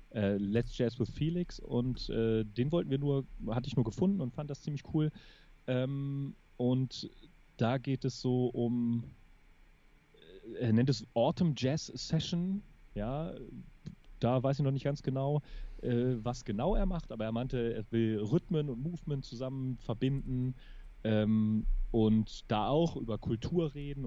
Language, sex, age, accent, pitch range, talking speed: German, male, 30-49, German, 110-135 Hz, 155 wpm